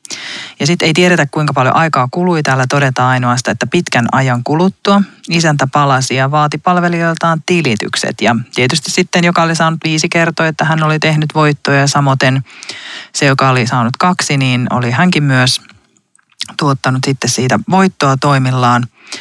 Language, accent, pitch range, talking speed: Finnish, native, 130-165 Hz, 155 wpm